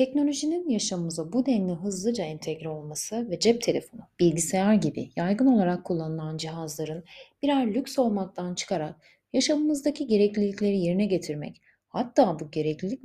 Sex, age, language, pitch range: female, 30-49, Turkish, 165-230 Hz